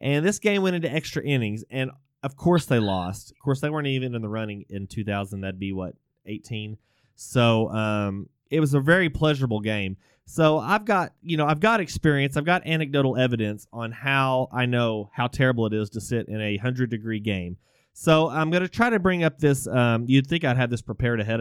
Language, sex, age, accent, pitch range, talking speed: English, male, 20-39, American, 105-150 Hz, 215 wpm